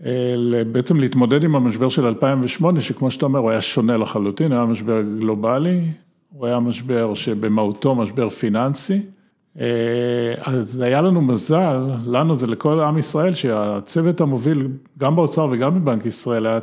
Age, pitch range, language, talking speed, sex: 50-69, 115-145 Hz, Hebrew, 145 wpm, male